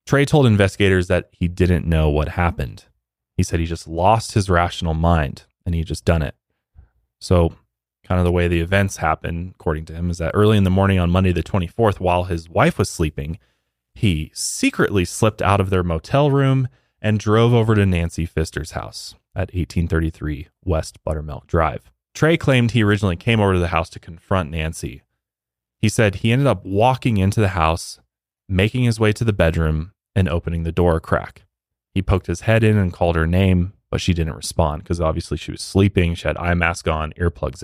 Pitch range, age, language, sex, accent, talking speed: 80-105 Hz, 20-39, English, male, American, 200 wpm